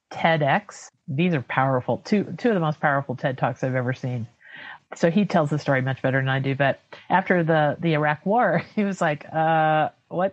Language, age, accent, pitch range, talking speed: English, 50-69, American, 140-165 Hz, 210 wpm